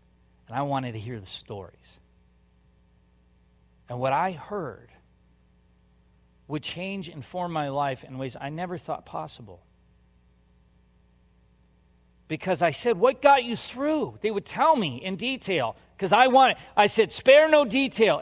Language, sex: English, male